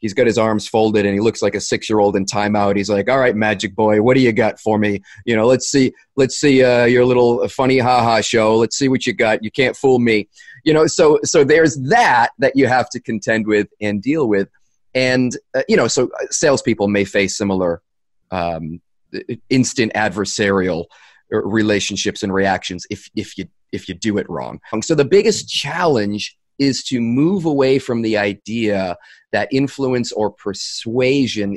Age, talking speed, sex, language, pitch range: 30-49, 190 wpm, male, English, 105-130 Hz